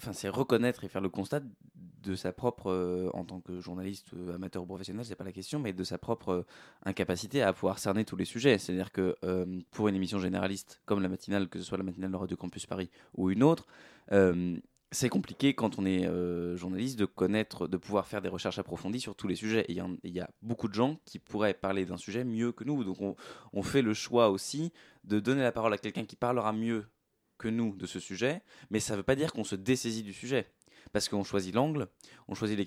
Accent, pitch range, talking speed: French, 95-115 Hz, 240 wpm